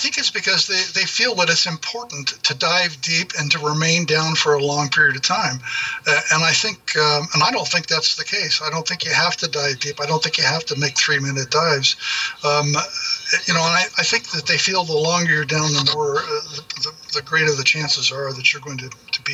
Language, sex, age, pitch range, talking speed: English, male, 60-79, 145-170 Hz, 260 wpm